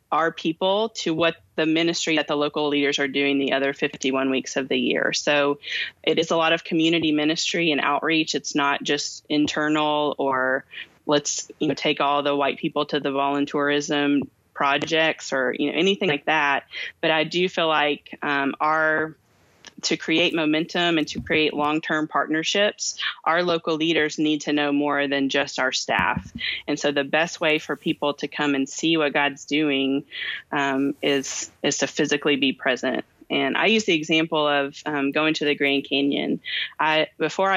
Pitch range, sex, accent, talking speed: 140-160 Hz, female, American, 180 wpm